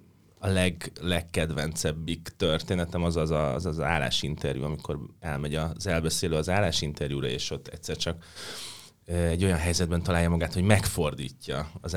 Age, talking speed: 30-49, 130 wpm